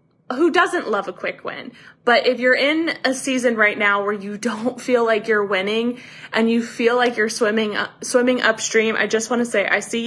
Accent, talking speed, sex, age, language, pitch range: American, 215 wpm, female, 20-39, English, 195-240 Hz